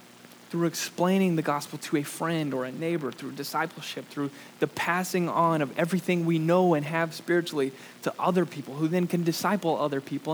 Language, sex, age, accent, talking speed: English, male, 20-39, American, 185 wpm